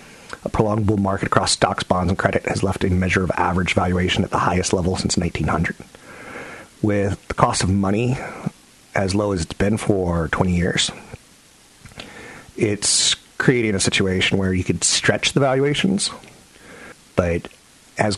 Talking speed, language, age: 150 wpm, English, 40-59